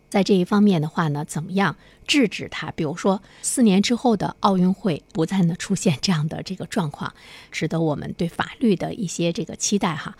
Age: 50-69